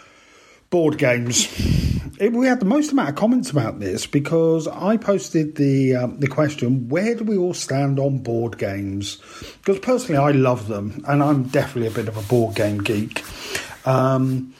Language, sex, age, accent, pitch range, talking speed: English, male, 40-59, British, 125-175 Hz, 175 wpm